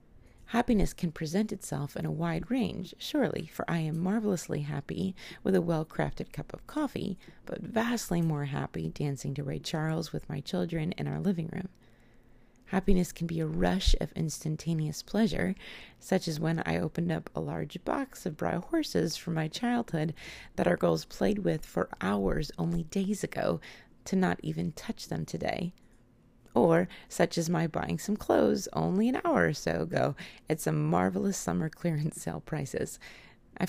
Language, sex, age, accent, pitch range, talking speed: English, female, 30-49, American, 150-195 Hz, 170 wpm